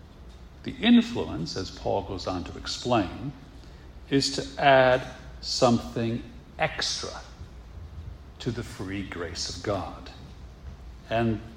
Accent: American